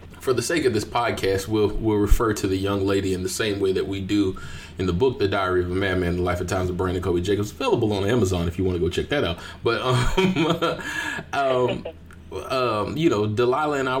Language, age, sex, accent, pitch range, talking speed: English, 30-49, male, American, 90-105 Hz, 245 wpm